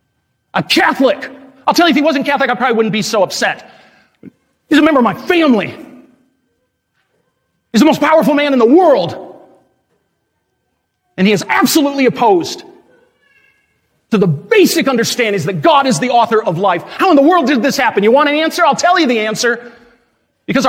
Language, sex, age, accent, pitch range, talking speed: English, male, 40-59, American, 215-290 Hz, 180 wpm